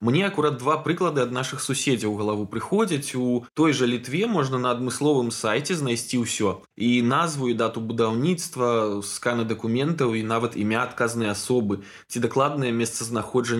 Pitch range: 110-145 Hz